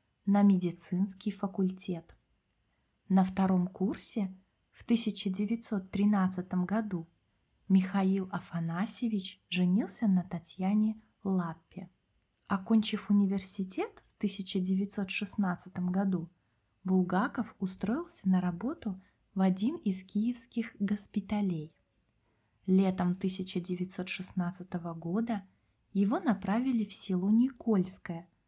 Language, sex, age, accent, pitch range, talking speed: Russian, female, 20-39, native, 180-210 Hz, 80 wpm